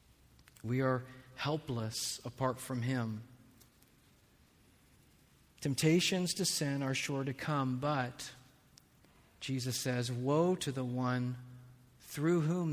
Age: 40-59